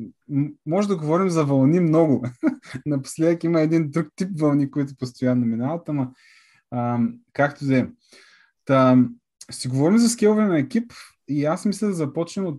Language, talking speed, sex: Bulgarian, 155 wpm, male